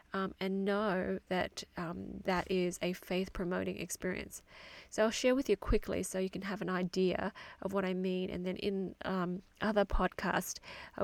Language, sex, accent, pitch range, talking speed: English, female, Australian, 180-200 Hz, 180 wpm